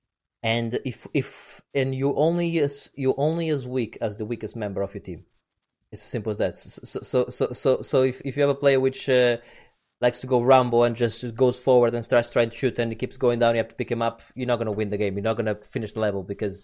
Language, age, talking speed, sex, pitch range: English, 20-39, 265 wpm, male, 110-130 Hz